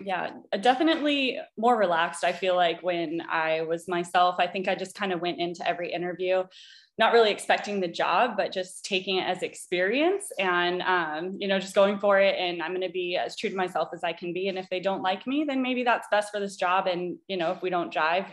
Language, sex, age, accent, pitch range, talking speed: English, female, 20-39, American, 175-195 Hz, 240 wpm